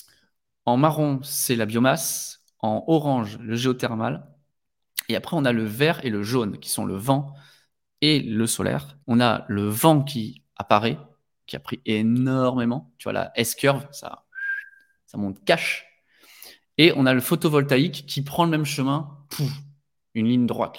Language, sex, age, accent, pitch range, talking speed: French, male, 20-39, French, 115-155 Hz, 160 wpm